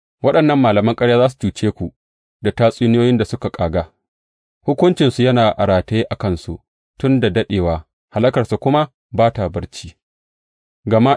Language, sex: English, male